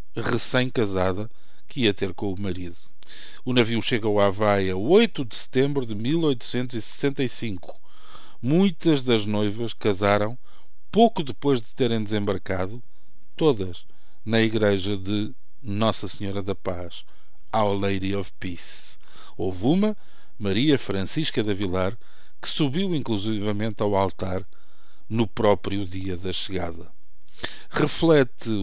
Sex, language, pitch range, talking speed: male, Portuguese, 95-125 Hz, 115 wpm